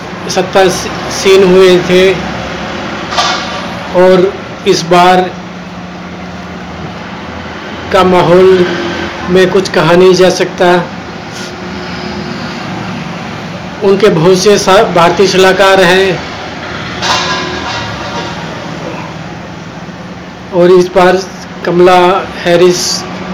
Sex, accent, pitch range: male, native, 175-190 Hz